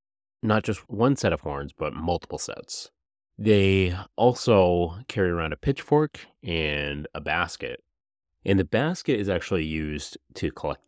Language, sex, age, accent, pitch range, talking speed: English, male, 30-49, American, 80-115 Hz, 145 wpm